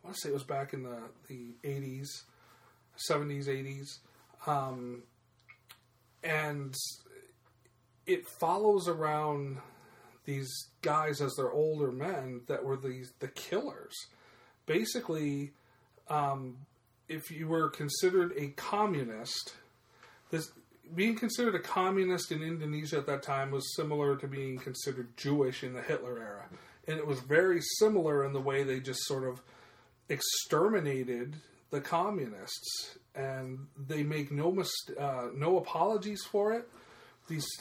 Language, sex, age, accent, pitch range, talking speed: English, male, 40-59, American, 135-170 Hz, 130 wpm